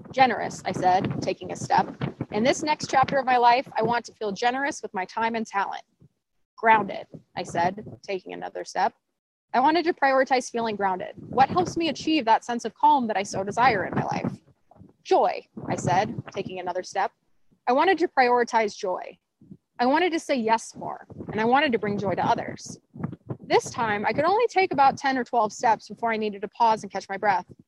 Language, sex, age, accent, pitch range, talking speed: English, female, 20-39, American, 205-295 Hz, 205 wpm